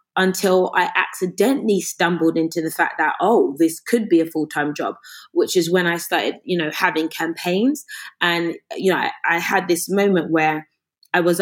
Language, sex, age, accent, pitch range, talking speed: English, female, 20-39, British, 165-200 Hz, 185 wpm